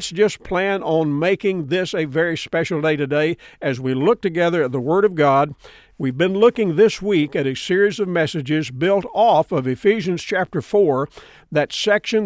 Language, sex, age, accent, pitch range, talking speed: English, male, 50-69, American, 150-200 Hz, 185 wpm